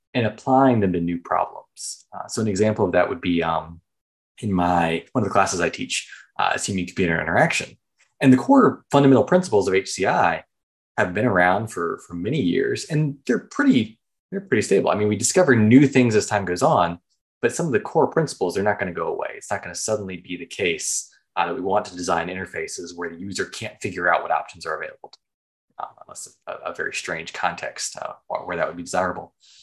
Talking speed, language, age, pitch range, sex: 215 wpm, English, 20-39, 90-130 Hz, male